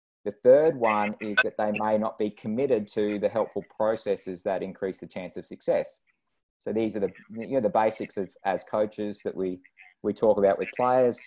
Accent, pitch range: Australian, 100-110 Hz